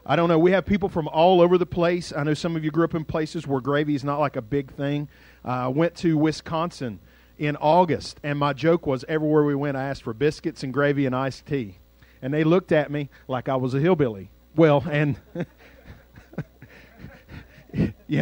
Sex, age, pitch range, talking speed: male, 40-59, 115-160 Hz, 210 wpm